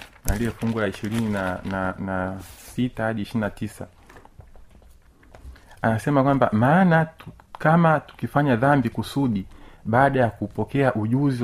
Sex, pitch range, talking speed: male, 105-130 Hz, 90 wpm